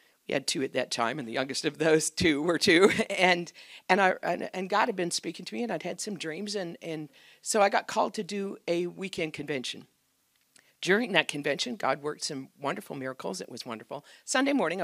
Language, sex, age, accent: English, female, 50-69, American